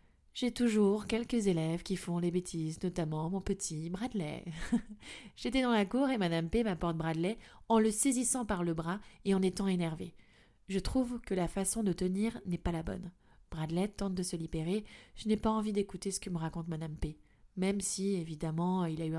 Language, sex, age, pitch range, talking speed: French, female, 20-39, 165-200 Hz, 200 wpm